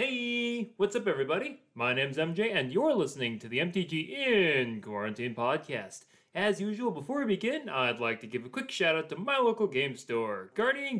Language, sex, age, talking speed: English, male, 30-49, 185 wpm